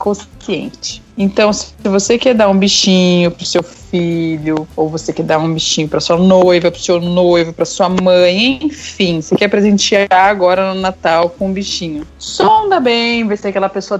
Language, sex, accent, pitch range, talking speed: Portuguese, female, Brazilian, 175-230 Hz, 180 wpm